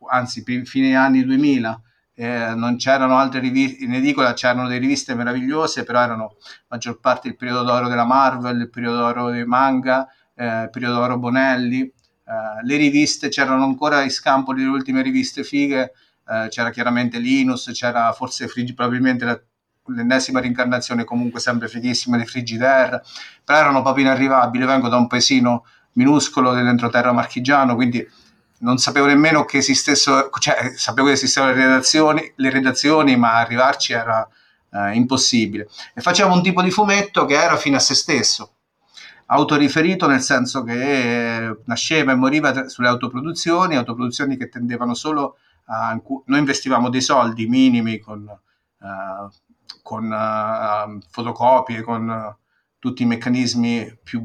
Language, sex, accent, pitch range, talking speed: Italian, male, native, 120-135 Hz, 145 wpm